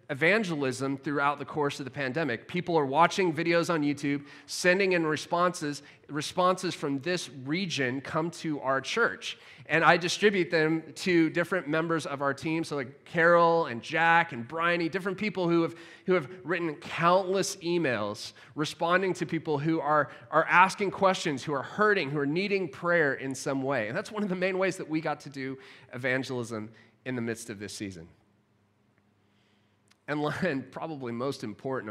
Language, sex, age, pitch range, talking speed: English, male, 30-49, 125-170 Hz, 175 wpm